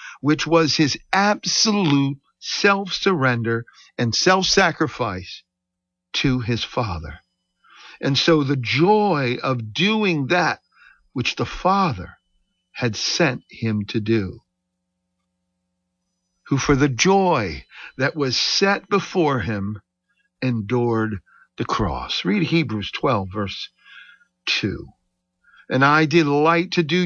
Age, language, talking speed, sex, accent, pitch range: 60-79, English, 105 wpm, male, American, 105-170 Hz